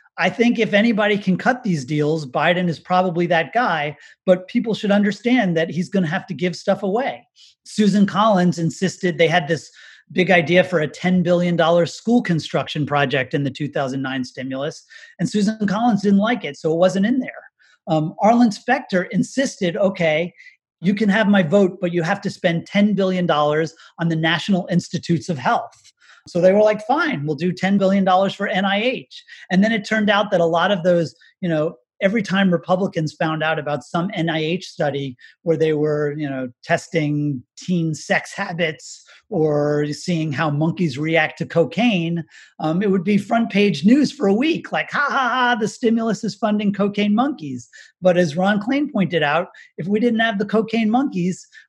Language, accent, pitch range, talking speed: English, American, 165-210 Hz, 185 wpm